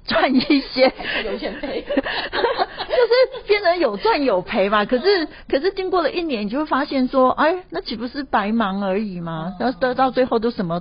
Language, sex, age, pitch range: Chinese, female, 40-59, 180-250 Hz